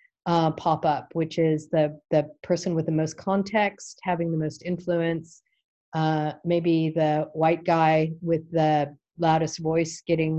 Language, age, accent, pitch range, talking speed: English, 40-59, American, 155-175 Hz, 150 wpm